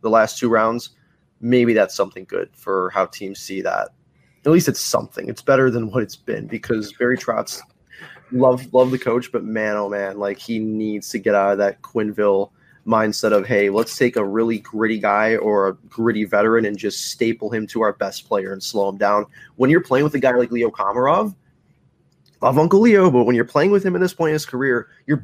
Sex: male